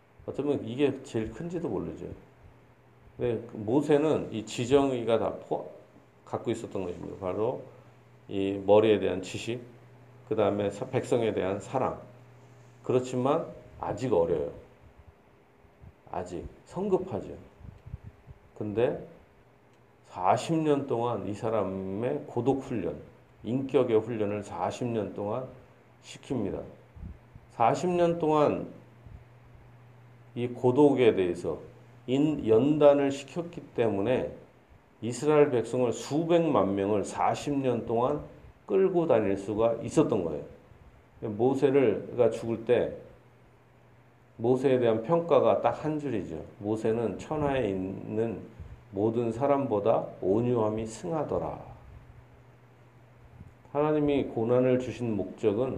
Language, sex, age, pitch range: Korean, male, 40-59, 110-140 Hz